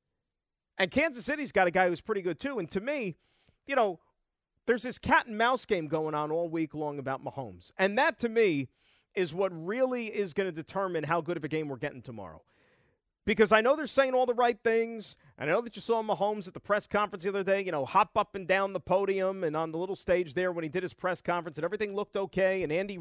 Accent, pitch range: American, 170-220 Hz